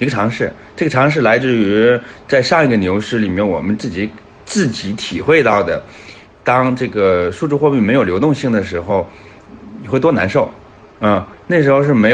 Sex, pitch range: male, 105-140 Hz